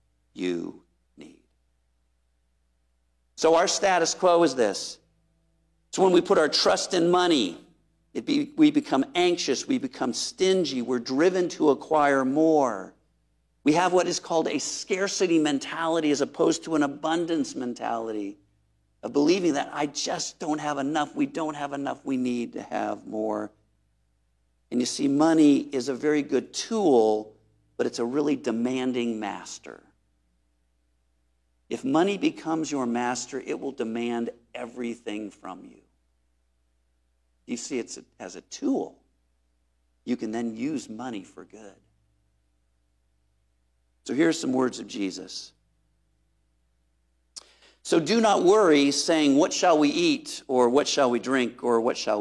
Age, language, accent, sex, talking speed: 50-69, English, American, male, 140 wpm